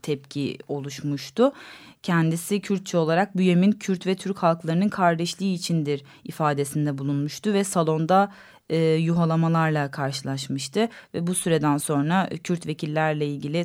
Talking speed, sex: 120 wpm, female